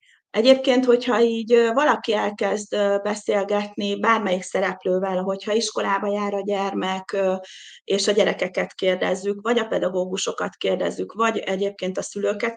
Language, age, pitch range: Hungarian, 30-49, 195-230 Hz